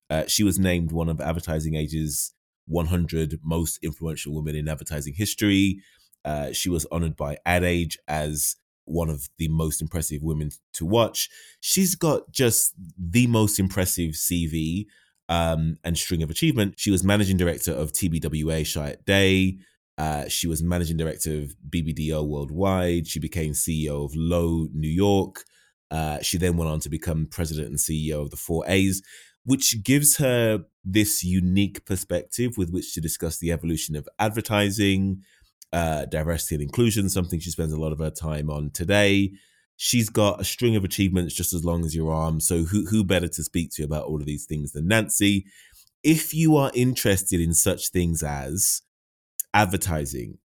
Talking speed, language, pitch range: 170 wpm, English, 80-100 Hz